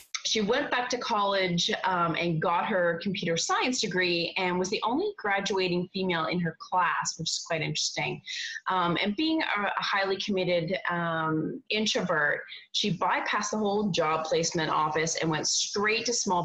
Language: English